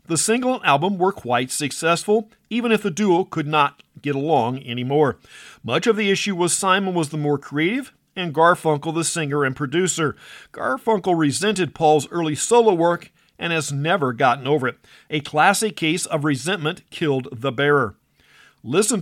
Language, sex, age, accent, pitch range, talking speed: English, male, 50-69, American, 145-200 Hz, 165 wpm